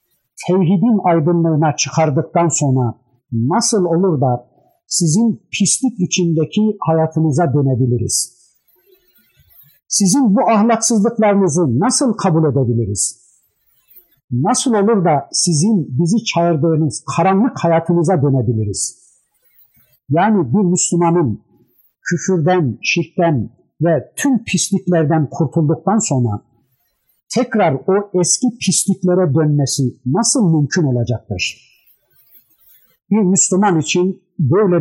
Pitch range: 140-185 Hz